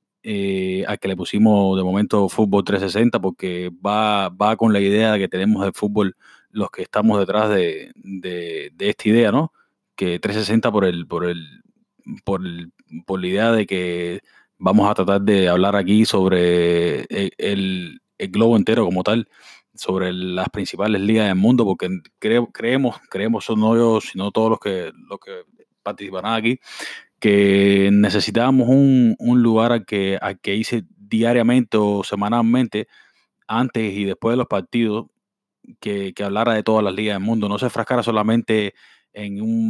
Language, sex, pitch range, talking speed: Spanish, male, 100-115 Hz, 170 wpm